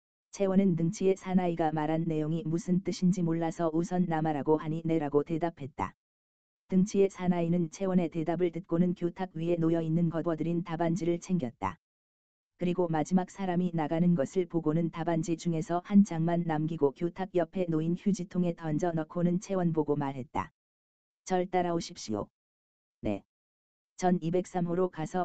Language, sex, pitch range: Korean, female, 155-180 Hz